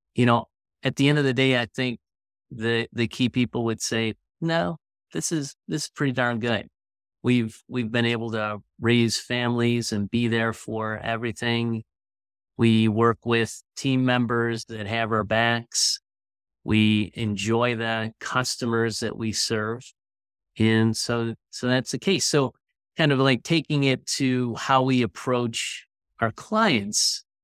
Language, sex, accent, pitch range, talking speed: English, male, American, 110-135 Hz, 155 wpm